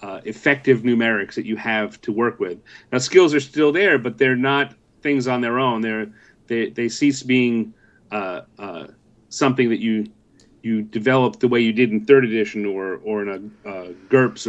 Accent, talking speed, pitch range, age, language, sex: American, 190 wpm, 110-140 Hz, 30-49, English, male